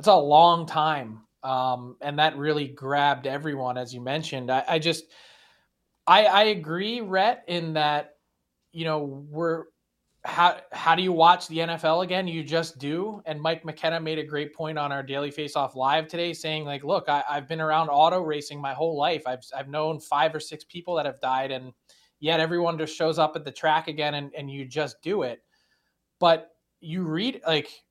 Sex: male